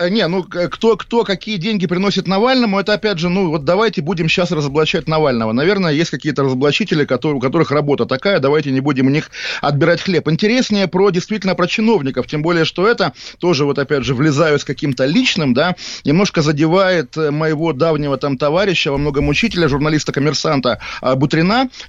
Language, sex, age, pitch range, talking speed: Russian, male, 20-39, 140-180 Hz, 175 wpm